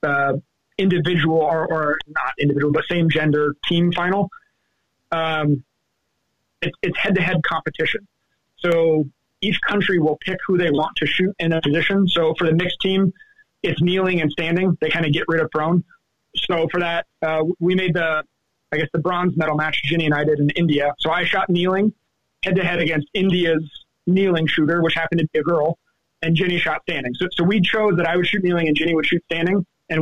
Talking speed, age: 205 wpm, 30-49